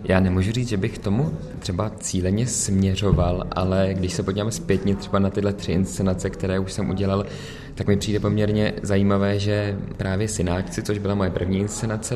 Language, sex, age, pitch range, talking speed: Czech, male, 20-39, 95-105 Hz, 180 wpm